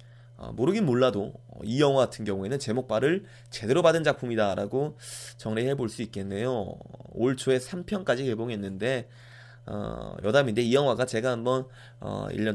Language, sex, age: Korean, male, 20-39